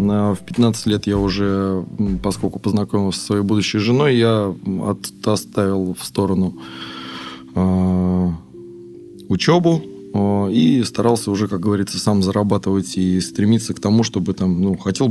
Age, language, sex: 20-39, Russian, male